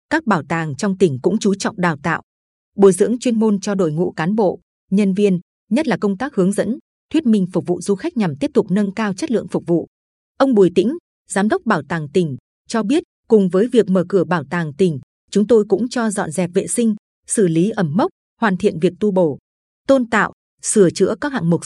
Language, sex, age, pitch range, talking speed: Vietnamese, female, 20-39, 175-225 Hz, 235 wpm